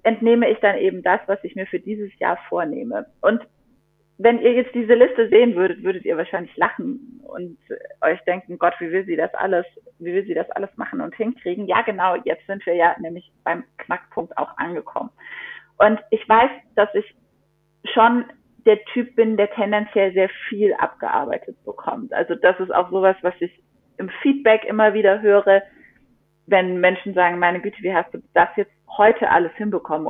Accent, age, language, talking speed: German, 30-49, German, 185 wpm